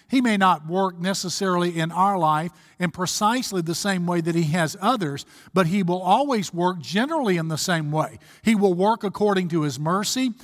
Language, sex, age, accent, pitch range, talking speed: English, male, 50-69, American, 170-215 Hz, 195 wpm